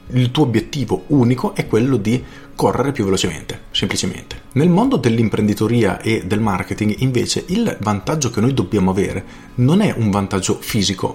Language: Italian